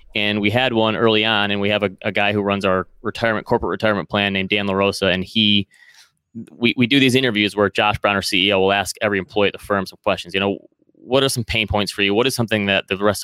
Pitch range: 100-115 Hz